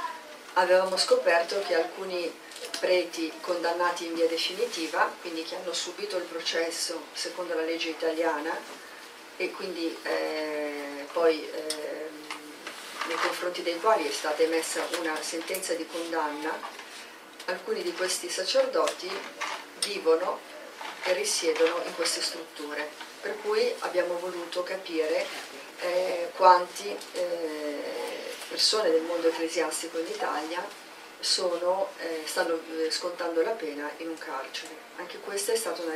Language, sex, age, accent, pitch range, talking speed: Italian, female, 40-59, native, 160-255 Hz, 120 wpm